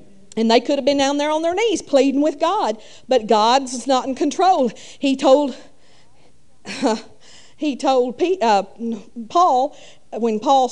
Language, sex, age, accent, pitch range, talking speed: English, female, 50-69, American, 240-310 Hz, 140 wpm